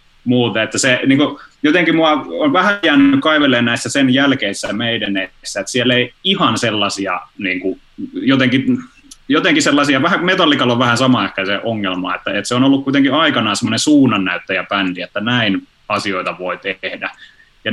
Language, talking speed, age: Finnish, 165 wpm, 20-39